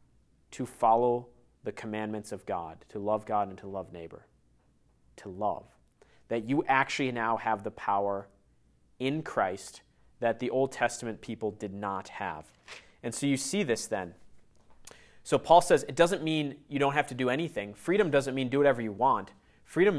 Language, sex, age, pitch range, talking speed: English, male, 30-49, 110-140 Hz, 175 wpm